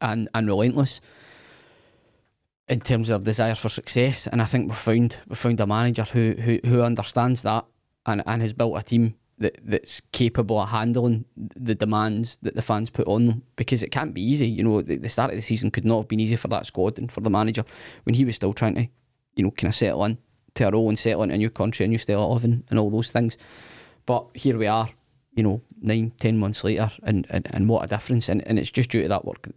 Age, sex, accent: 20-39, male, British